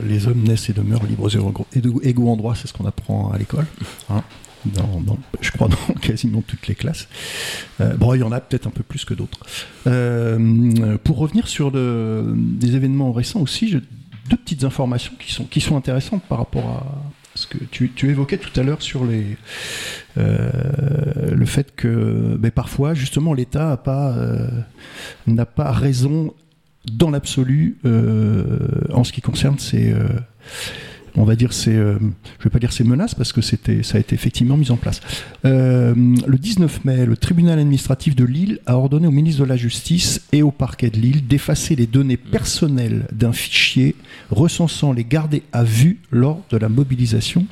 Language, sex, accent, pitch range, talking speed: French, male, French, 115-140 Hz, 190 wpm